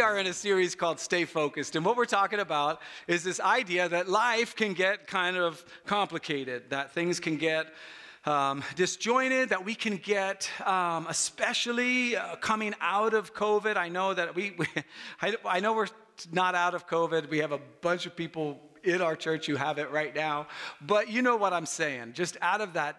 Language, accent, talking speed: English, American, 200 wpm